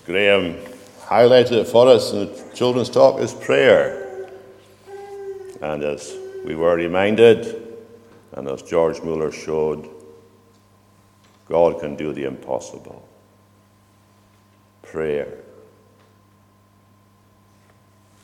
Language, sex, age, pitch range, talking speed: English, male, 60-79, 100-105 Hz, 90 wpm